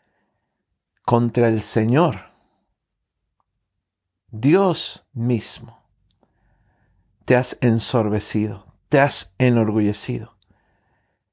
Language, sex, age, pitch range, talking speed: Spanish, male, 50-69, 110-150 Hz, 60 wpm